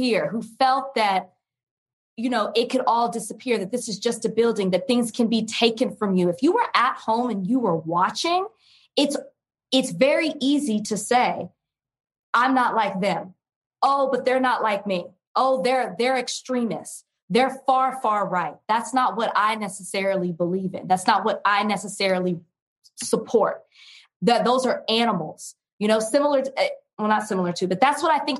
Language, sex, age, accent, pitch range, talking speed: English, female, 20-39, American, 190-255 Hz, 180 wpm